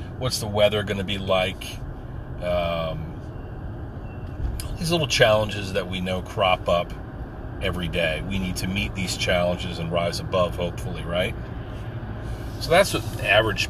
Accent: American